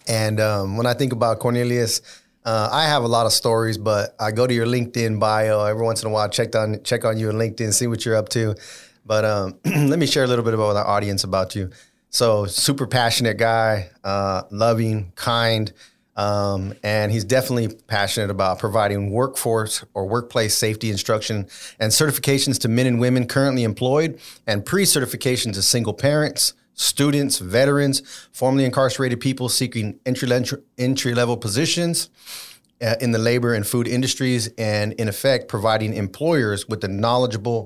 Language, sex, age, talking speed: English, male, 30-49, 170 wpm